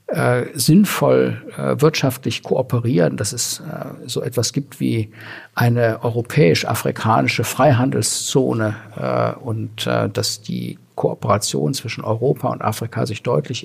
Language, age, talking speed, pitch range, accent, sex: German, 50-69, 120 wpm, 105-135 Hz, German, male